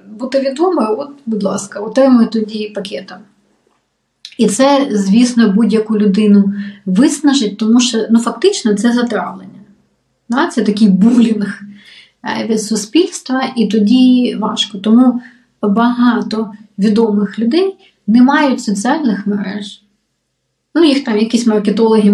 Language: Ukrainian